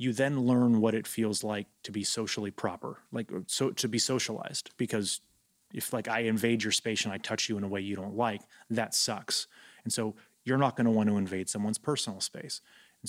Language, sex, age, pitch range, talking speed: English, male, 30-49, 100-115 Hz, 220 wpm